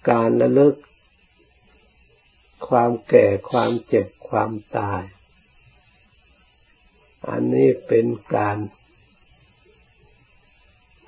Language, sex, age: Thai, male, 60-79